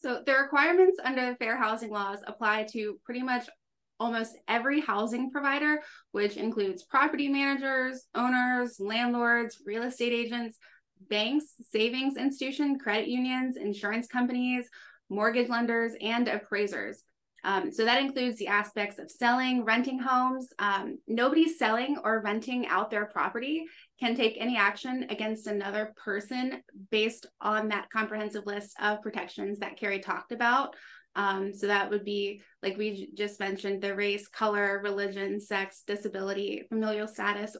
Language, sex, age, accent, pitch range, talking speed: English, female, 20-39, American, 205-255 Hz, 145 wpm